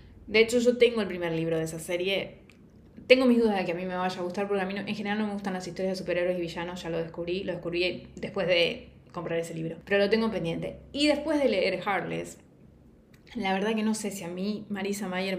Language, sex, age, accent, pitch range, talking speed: Spanish, female, 20-39, Argentinian, 175-215 Hz, 255 wpm